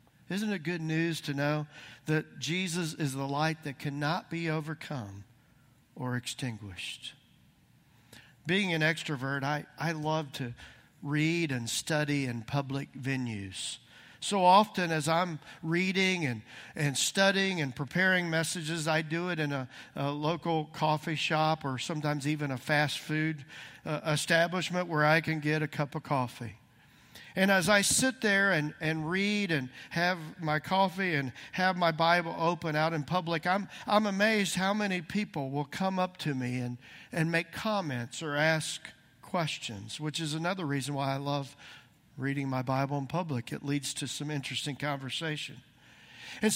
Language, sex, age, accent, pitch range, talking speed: English, male, 50-69, American, 140-175 Hz, 155 wpm